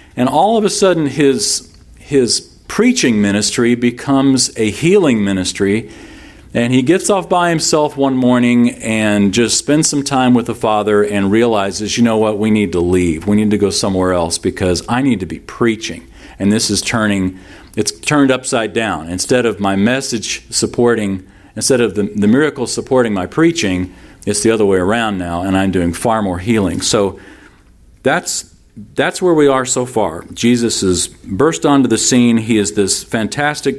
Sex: male